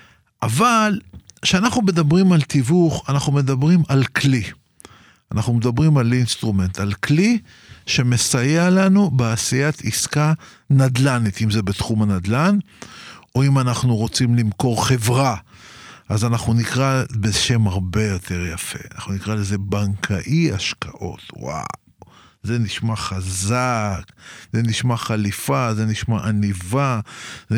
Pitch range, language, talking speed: 105-135 Hz, Hebrew, 115 wpm